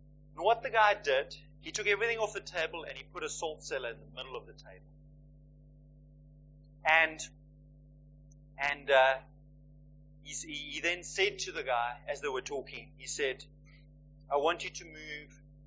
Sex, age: male, 30-49